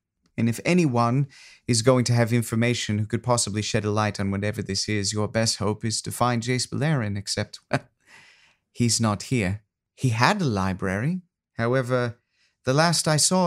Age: 30-49